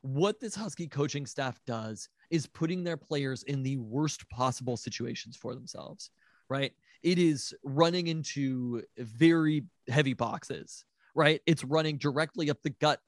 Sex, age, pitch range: male, 20-39, 125-165 Hz